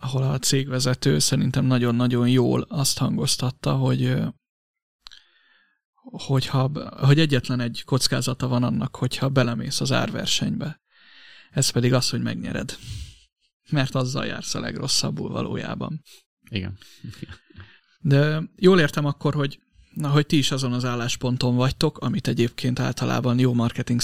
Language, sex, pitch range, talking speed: Hungarian, male, 125-150 Hz, 120 wpm